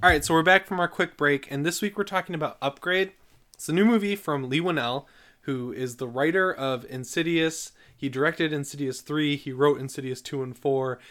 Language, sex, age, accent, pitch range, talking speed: English, male, 20-39, American, 120-150 Hz, 210 wpm